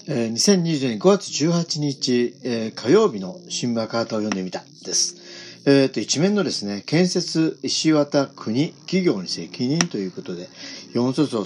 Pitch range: 120-170 Hz